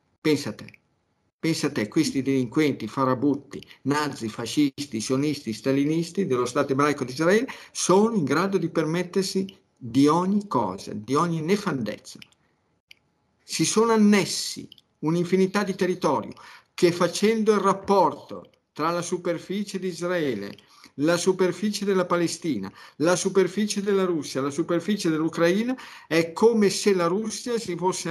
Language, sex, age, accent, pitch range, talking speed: Italian, male, 50-69, native, 145-190 Hz, 130 wpm